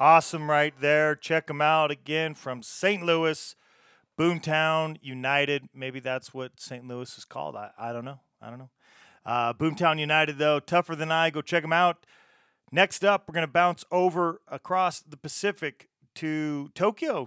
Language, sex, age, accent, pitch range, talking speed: English, male, 40-59, American, 135-165 Hz, 170 wpm